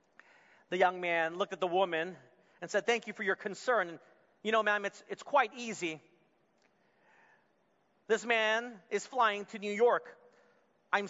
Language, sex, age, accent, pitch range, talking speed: English, male, 40-59, American, 165-215 Hz, 150 wpm